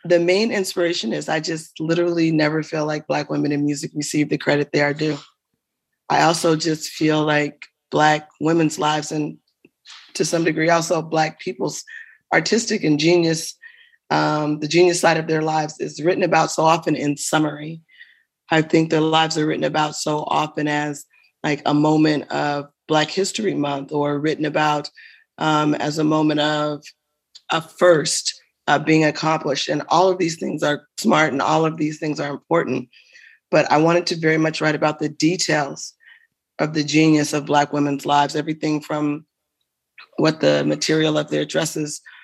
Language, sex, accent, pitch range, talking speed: English, female, American, 150-165 Hz, 170 wpm